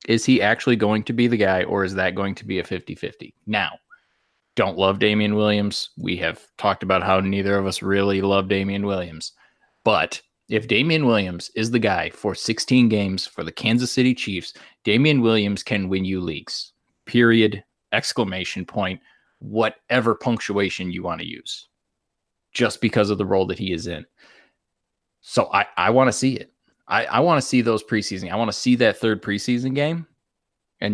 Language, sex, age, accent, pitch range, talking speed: English, male, 20-39, American, 100-115 Hz, 180 wpm